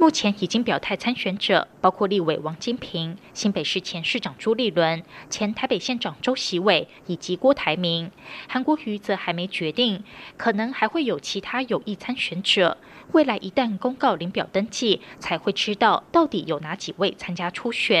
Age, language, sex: 20-39, German, female